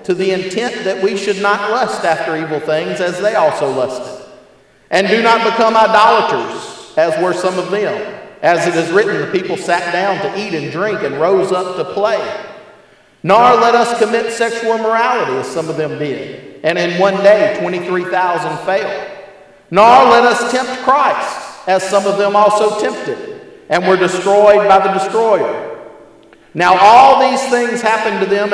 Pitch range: 180-225 Hz